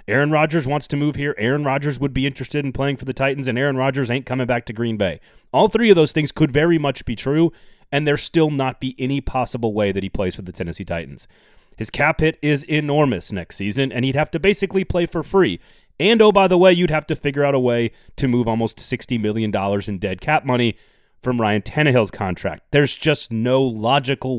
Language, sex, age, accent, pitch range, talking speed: English, male, 30-49, American, 110-150 Hz, 230 wpm